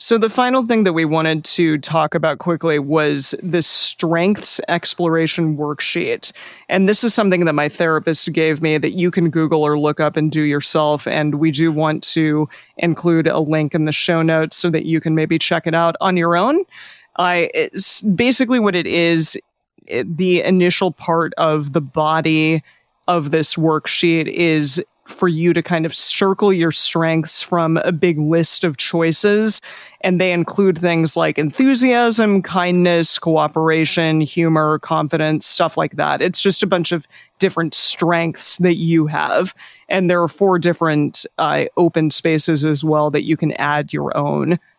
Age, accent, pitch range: 30-49, American, 155-180 Hz